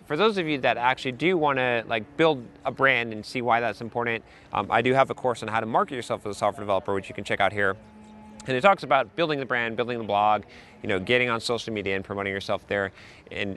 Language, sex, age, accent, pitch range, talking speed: English, male, 30-49, American, 110-140 Hz, 265 wpm